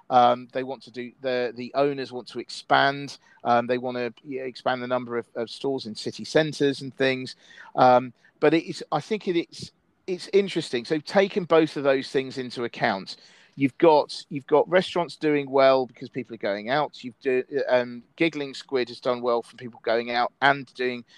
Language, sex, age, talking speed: English, male, 40-59, 200 wpm